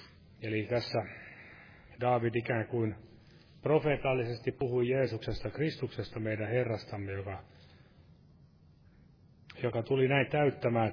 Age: 30-49